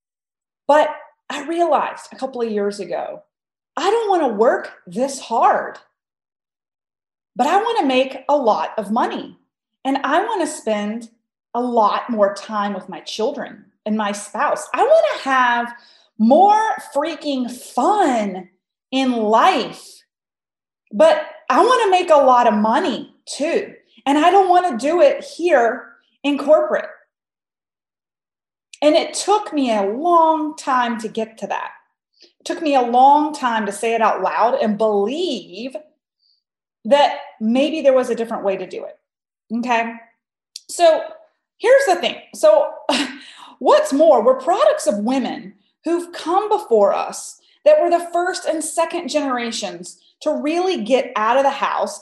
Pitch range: 230-315 Hz